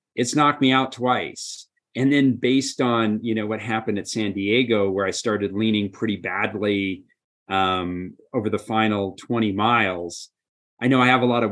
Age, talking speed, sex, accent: 30-49, 180 wpm, male, American